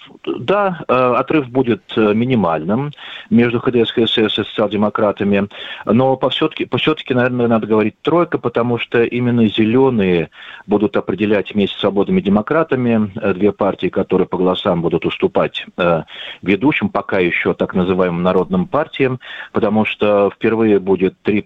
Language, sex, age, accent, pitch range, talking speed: Russian, male, 40-59, native, 100-130 Hz, 130 wpm